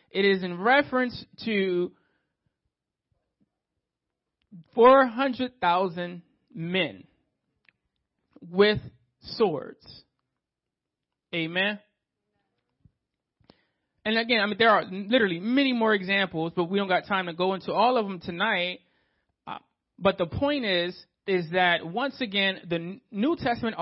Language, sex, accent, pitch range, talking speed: English, male, American, 170-225 Hz, 110 wpm